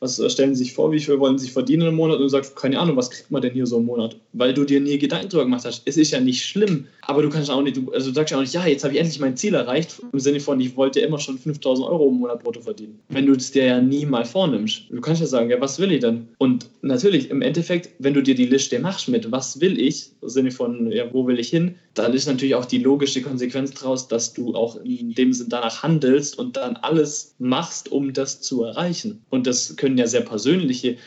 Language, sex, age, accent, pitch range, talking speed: German, male, 20-39, German, 115-145 Hz, 270 wpm